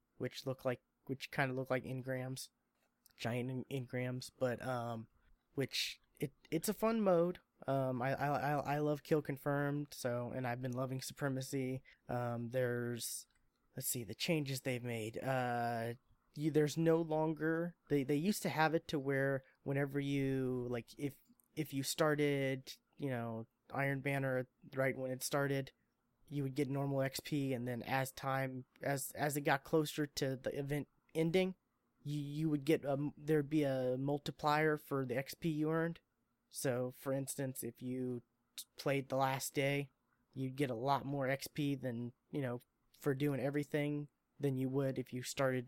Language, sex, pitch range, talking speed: English, male, 130-150 Hz, 165 wpm